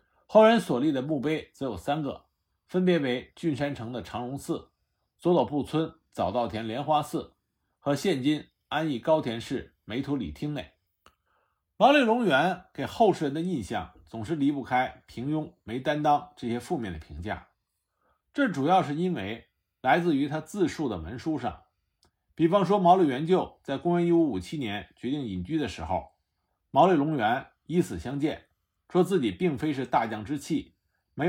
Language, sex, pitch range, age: Chinese, male, 110-165 Hz, 50-69